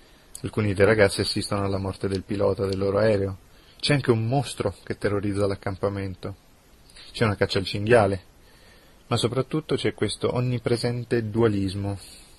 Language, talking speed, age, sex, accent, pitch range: Italian, 140 wpm, 30-49, male, native, 100-110 Hz